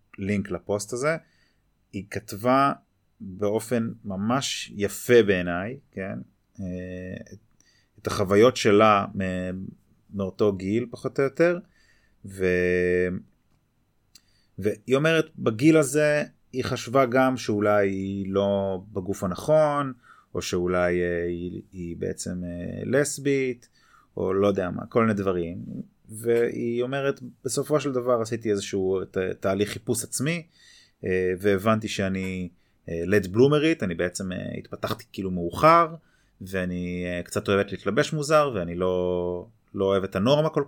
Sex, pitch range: male, 95-125 Hz